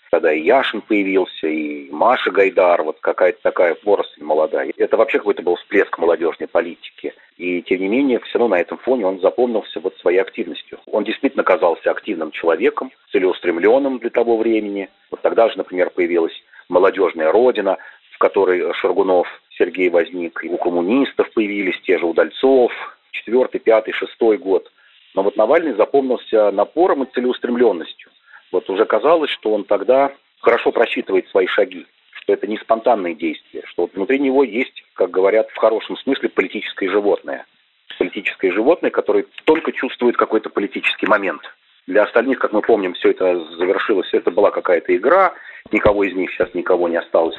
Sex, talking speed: male, 155 wpm